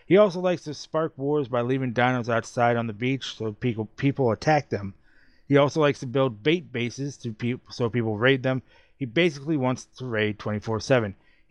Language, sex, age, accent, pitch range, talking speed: English, male, 30-49, American, 110-140 Hz, 195 wpm